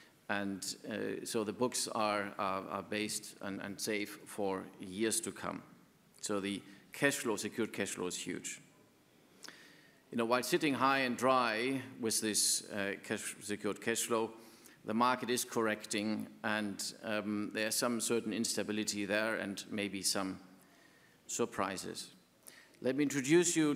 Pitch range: 110-140 Hz